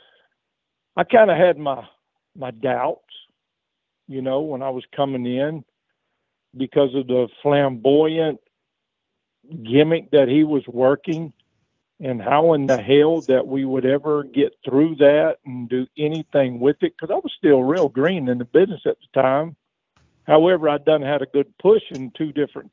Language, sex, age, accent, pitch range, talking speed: English, male, 50-69, American, 130-150 Hz, 165 wpm